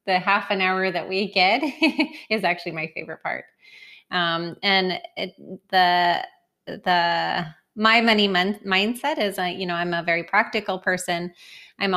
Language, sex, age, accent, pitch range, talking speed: English, female, 20-39, American, 175-205 Hz, 155 wpm